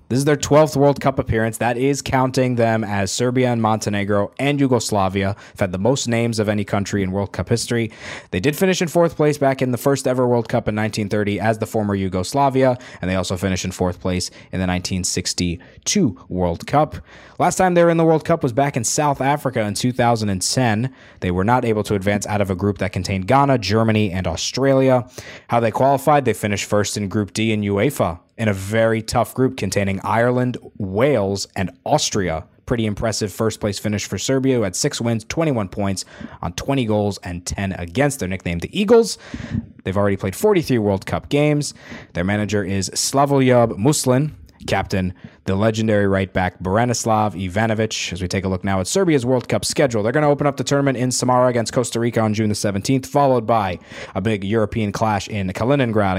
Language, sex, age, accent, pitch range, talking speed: English, male, 20-39, American, 95-130 Hz, 200 wpm